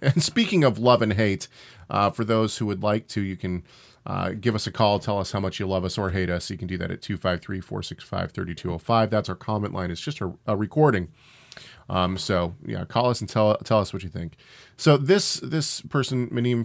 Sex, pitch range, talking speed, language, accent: male, 100-130 Hz, 225 wpm, English, American